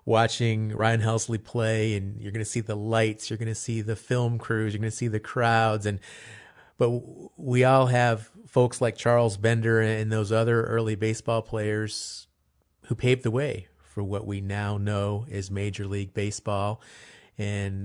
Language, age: English, 30-49